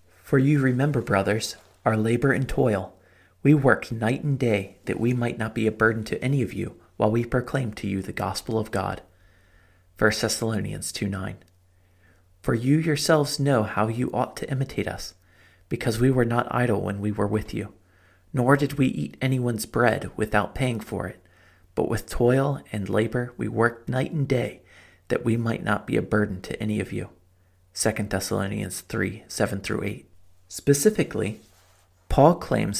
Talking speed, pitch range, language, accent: 170 wpm, 90-120 Hz, English, American